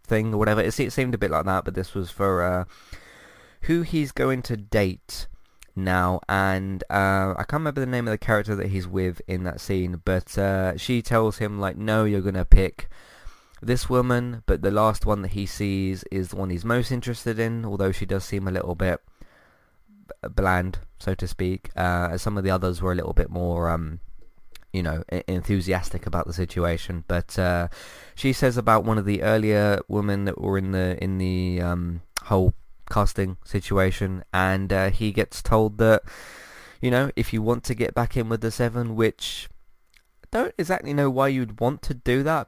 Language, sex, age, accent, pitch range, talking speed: English, male, 20-39, British, 90-115 Hz, 195 wpm